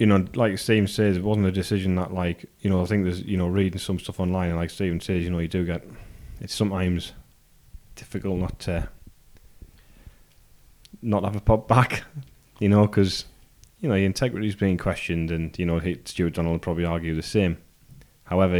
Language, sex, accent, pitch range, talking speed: English, male, British, 85-95 Hz, 200 wpm